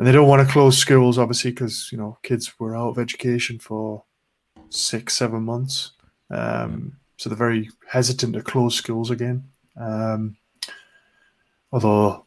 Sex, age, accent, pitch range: male, 20-39, British, 115-130 Hz